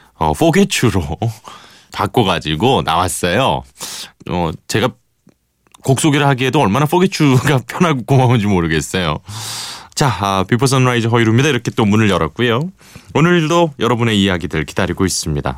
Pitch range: 85-125 Hz